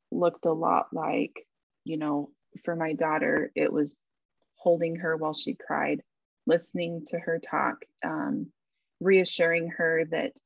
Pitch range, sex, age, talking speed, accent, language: 160-185 Hz, female, 20-39, 140 wpm, American, English